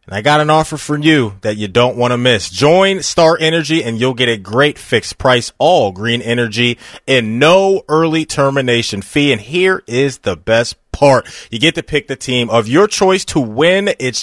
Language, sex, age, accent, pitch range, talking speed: English, male, 30-49, American, 115-150 Hz, 205 wpm